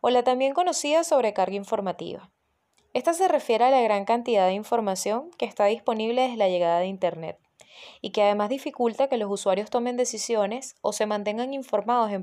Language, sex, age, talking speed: Spanish, female, 20-39, 180 wpm